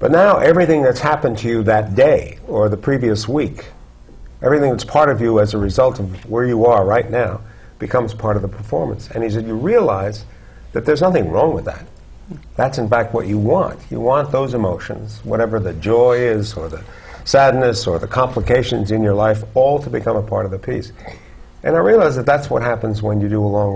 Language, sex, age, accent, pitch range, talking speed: English, male, 50-69, American, 100-125 Hz, 215 wpm